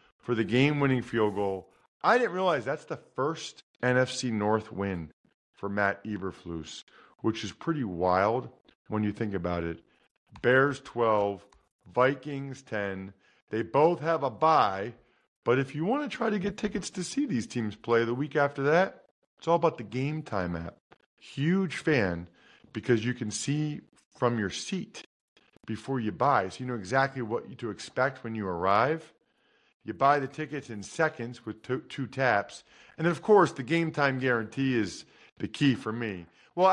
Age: 40-59